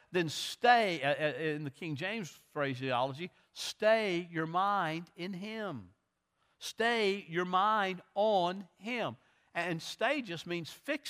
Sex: male